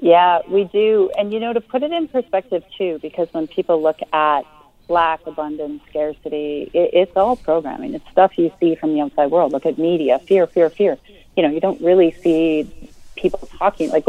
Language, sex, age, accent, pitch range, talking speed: English, female, 40-59, American, 155-195 Hz, 195 wpm